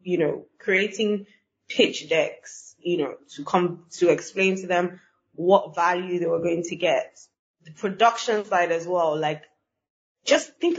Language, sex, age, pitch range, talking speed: English, female, 20-39, 170-200 Hz, 155 wpm